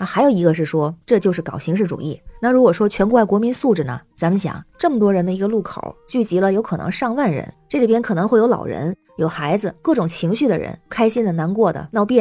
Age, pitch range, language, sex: 20-39, 170-225 Hz, Chinese, female